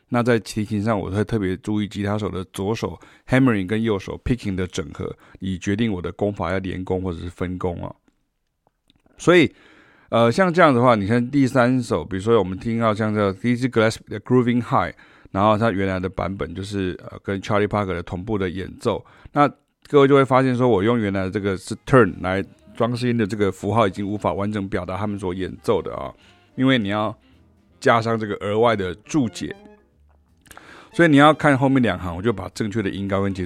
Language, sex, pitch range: Chinese, male, 95-115 Hz